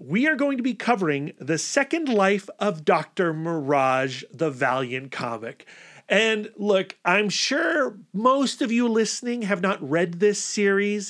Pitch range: 160-235 Hz